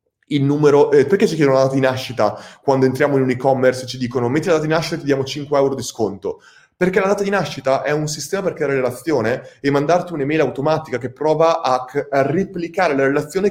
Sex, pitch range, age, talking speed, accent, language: male, 125-160 Hz, 30-49, 230 wpm, native, Italian